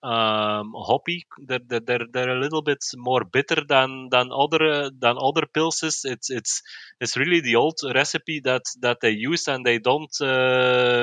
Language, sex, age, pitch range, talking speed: English, male, 20-39, 115-135 Hz, 165 wpm